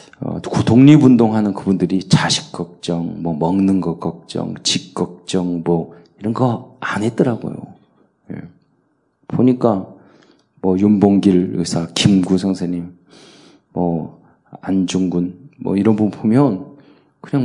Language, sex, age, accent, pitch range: Korean, male, 40-59, native, 90-115 Hz